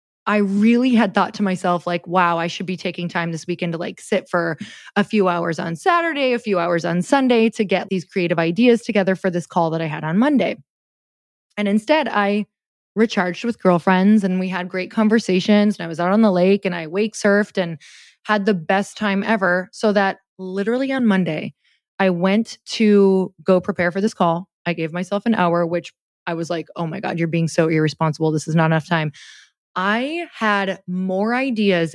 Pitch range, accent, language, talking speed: 175-210 Hz, American, English, 205 wpm